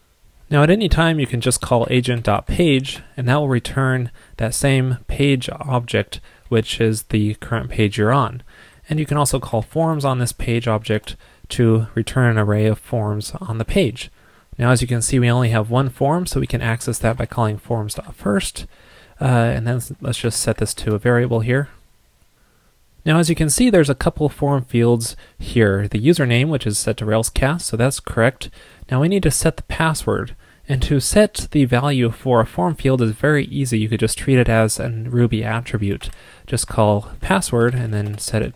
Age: 30-49